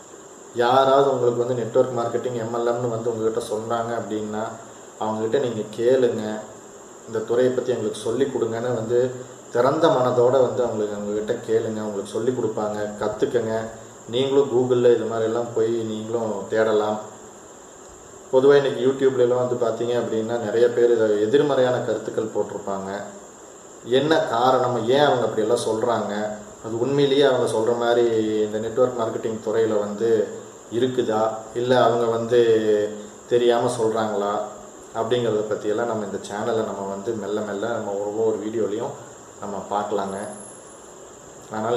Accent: native